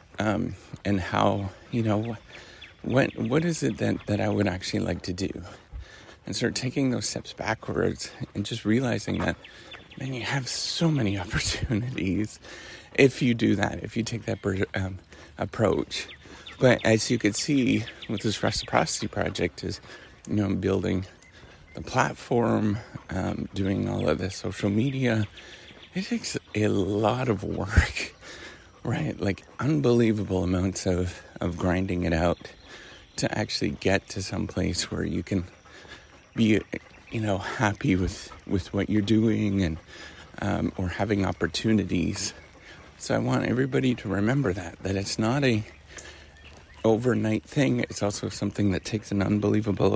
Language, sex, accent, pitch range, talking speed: English, male, American, 95-115 Hz, 150 wpm